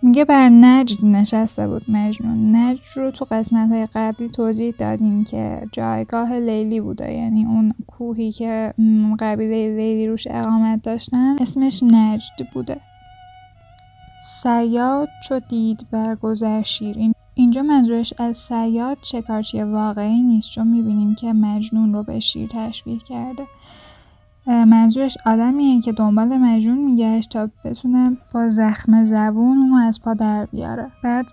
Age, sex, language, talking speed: 10-29, female, Persian, 130 wpm